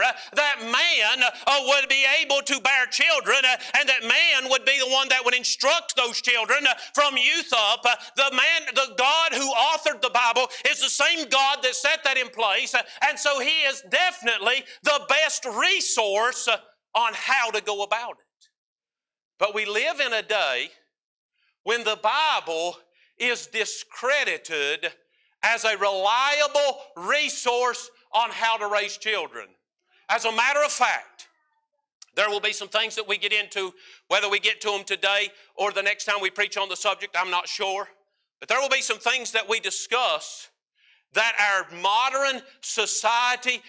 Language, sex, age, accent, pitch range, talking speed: English, male, 50-69, American, 215-280 Hz, 170 wpm